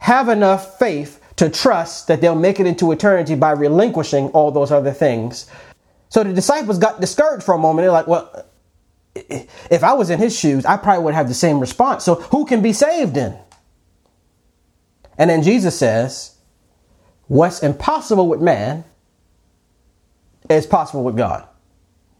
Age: 30-49